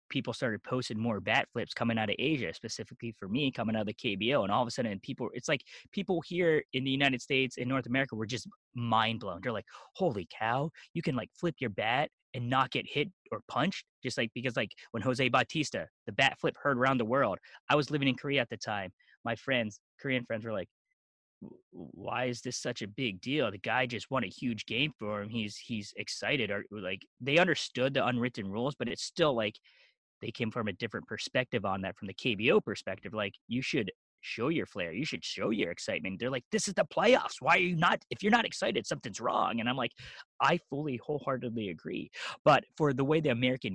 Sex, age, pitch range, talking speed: male, 20-39, 115-145 Hz, 230 wpm